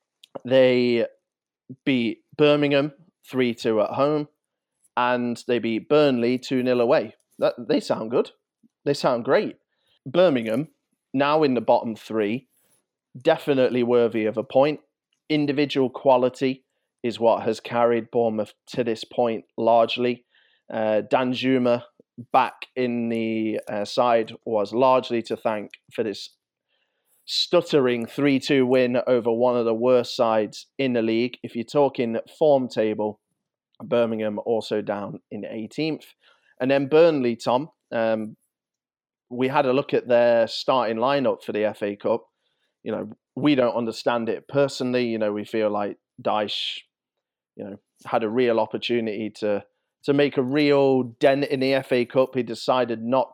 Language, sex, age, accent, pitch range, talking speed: English, male, 30-49, British, 115-135 Hz, 140 wpm